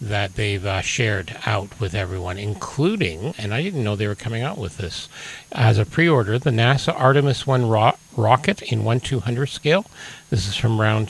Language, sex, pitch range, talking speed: English, male, 110-140 Hz, 195 wpm